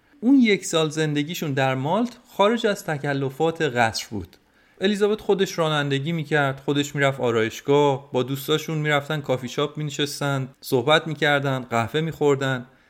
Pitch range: 135-190 Hz